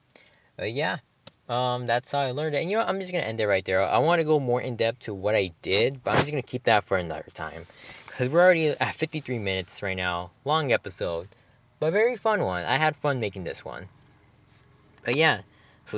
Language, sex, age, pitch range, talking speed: English, male, 20-39, 95-135 Hz, 235 wpm